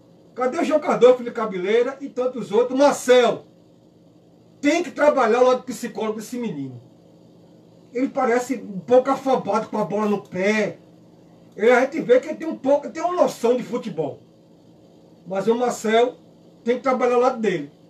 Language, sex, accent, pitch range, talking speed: Portuguese, male, Brazilian, 220-275 Hz, 180 wpm